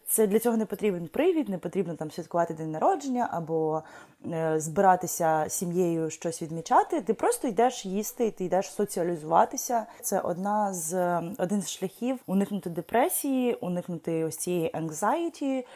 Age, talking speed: 20-39, 140 wpm